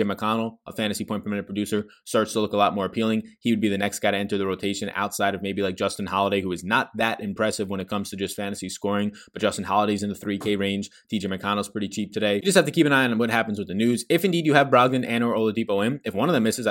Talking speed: 290 wpm